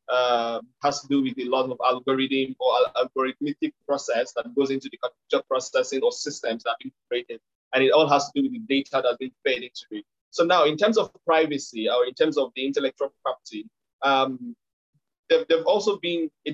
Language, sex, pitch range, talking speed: English, male, 130-175 Hz, 205 wpm